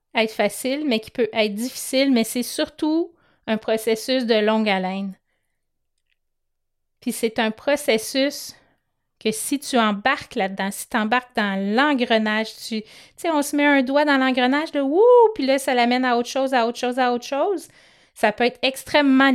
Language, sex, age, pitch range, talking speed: French, female, 30-49, 205-255 Hz, 170 wpm